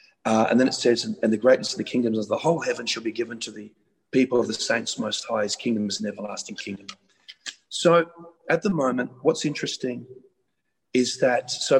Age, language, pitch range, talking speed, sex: 40-59, English, 115-160 Hz, 195 wpm, male